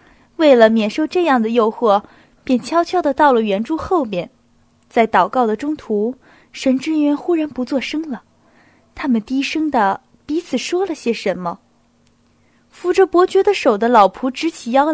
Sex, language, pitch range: female, Chinese, 220-315 Hz